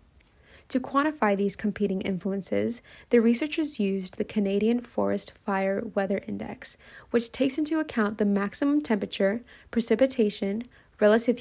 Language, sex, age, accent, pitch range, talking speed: English, female, 20-39, American, 200-245 Hz, 120 wpm